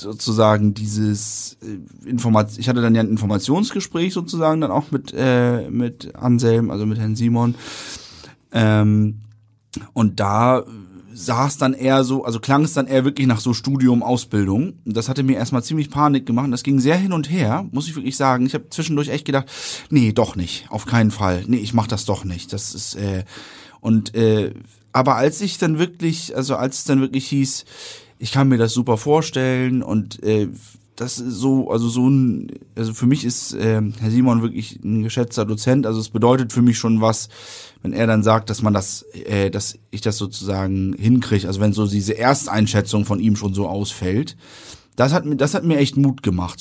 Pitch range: 105-130 Hz